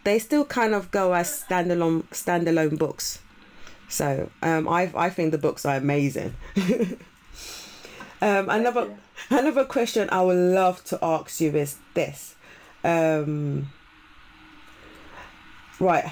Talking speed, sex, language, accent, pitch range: 120 wpm, female, English, British, 170-220 Hz